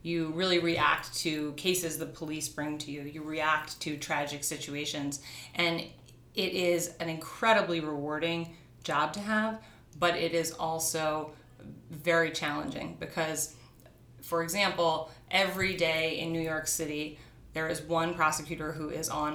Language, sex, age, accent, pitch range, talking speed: English, female, 30-49, American, 145-165 Hz, 145 wpm